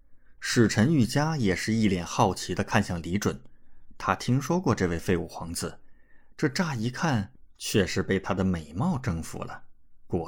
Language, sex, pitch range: Chinese, male, 90-115 Hz